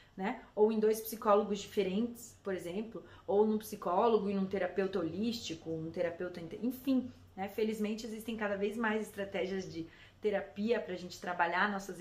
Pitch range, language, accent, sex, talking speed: 180-225 Hz, Portuguese, Brazilian, female, 165 wpm